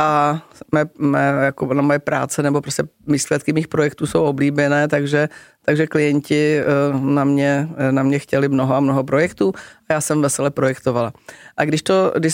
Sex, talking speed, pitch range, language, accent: female, 170 wpm, 135-155 Hz, Czech, native